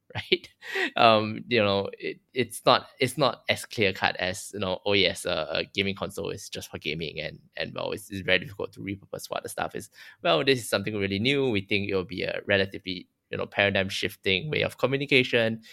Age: 10-29